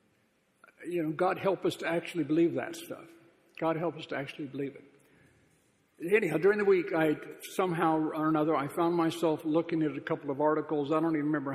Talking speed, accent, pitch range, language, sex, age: 195 wpm, American, 145-165 Hz, English, male, 60-79